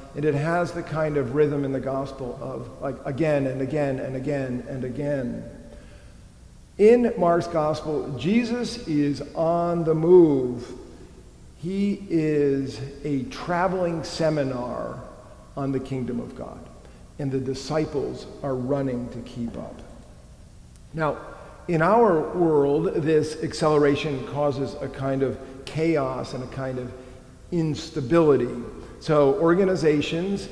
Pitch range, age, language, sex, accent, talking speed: 135-165 Hz, 50-69, English, male, American, 125 wpm